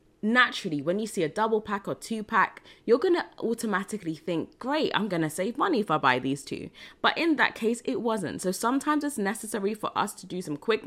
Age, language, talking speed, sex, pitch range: 20-39, English, 220 wpm, female, 150-215 Hz